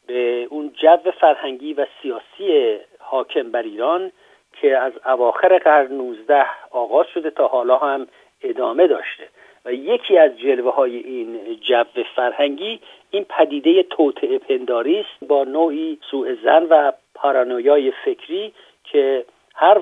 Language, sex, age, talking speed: Persian, male, 50-69, 120 wpm